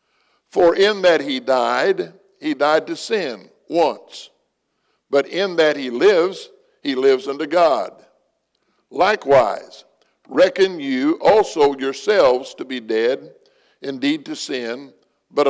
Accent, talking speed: American, 120 wpm